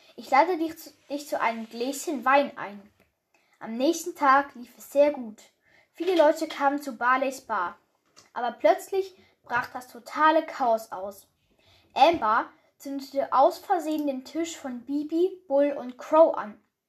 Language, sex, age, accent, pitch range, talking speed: German, female, 10-29, German, 255-320 Hz, 150 wpm